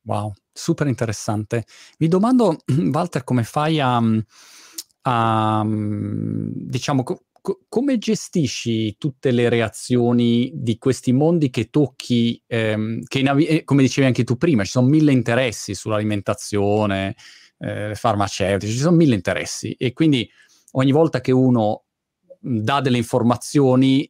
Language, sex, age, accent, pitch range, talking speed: Italian, male, 30-49, native, 110-140 Hz, 120 wpm